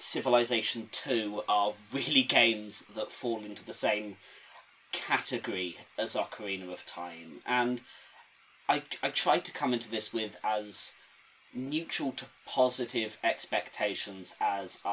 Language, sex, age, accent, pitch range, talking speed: English, male, 20-39, British, 105-130 Hz, 120 wpm